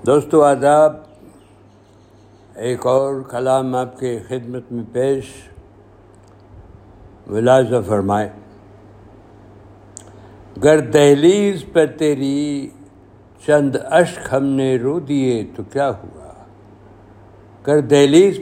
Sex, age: male, 60-79